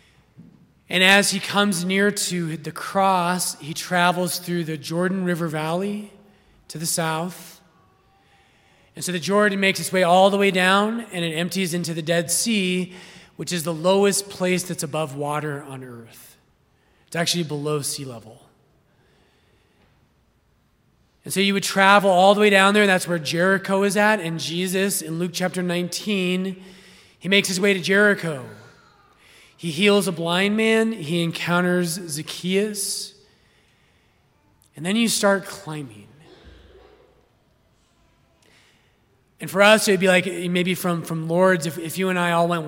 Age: 30-49